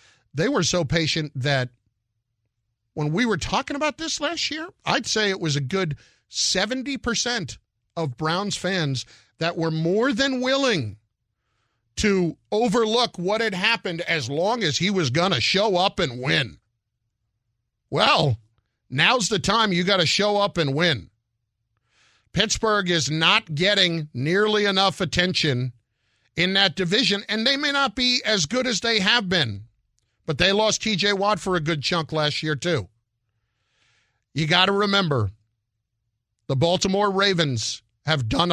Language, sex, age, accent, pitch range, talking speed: English, male, 50-69, American, 115-185 Hz, 150 wpm